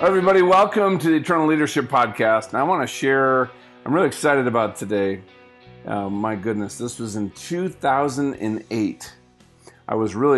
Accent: American